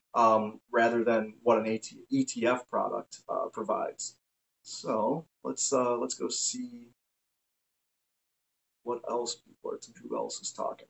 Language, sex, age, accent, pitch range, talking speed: English, male, 30-49, American, 115-155 Hz, 125 wpm